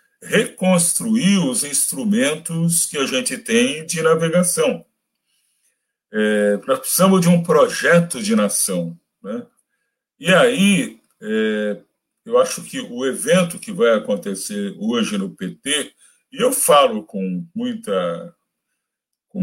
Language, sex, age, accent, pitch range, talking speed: Portuguese, male, 50-69, Brazilian, 165-245 Hz, 115 wpm